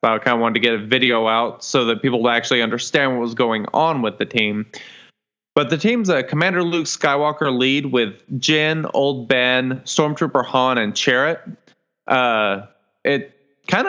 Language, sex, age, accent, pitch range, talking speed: English, male, 20-39, American, 120-155 Hz, 175 wpm